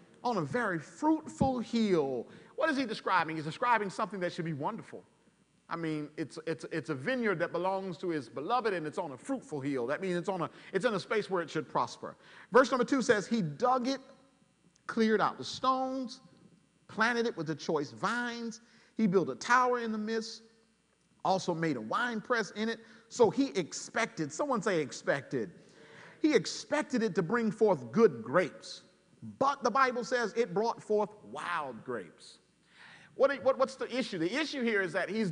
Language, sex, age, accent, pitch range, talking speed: English, male, 40-59, American, 175-245 Hz, 190 wpm